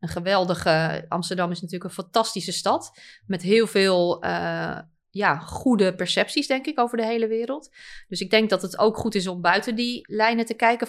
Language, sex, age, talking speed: Dutch, female, 30-49, 195 wpm